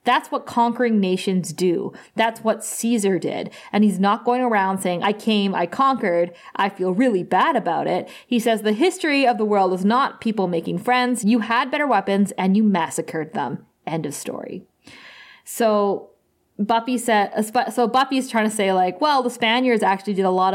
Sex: female